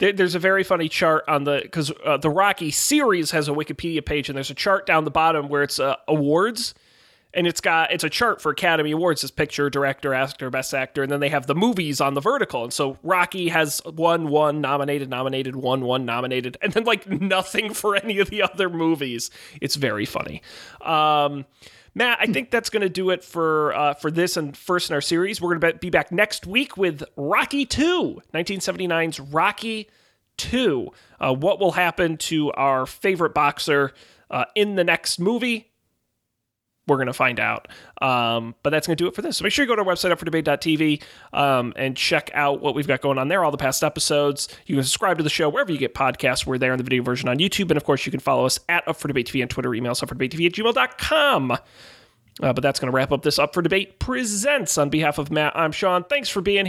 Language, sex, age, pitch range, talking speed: English, male, 30-49, 140-185 Hz, 230 wpm